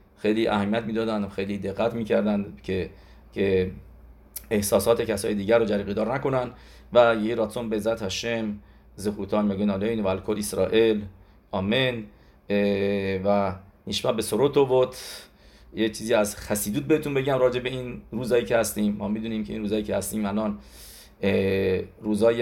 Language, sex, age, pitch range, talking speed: English, male, 40-59, 100-120 Hz, 150 wpm